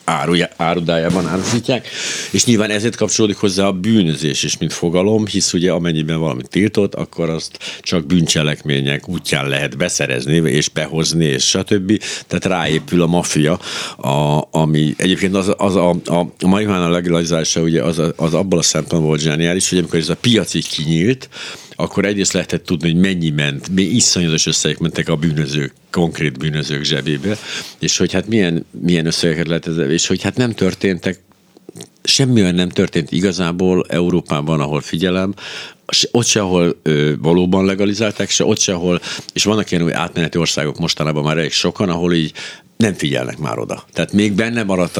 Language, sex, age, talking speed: Hungarian, male, 60-79, 160 wpm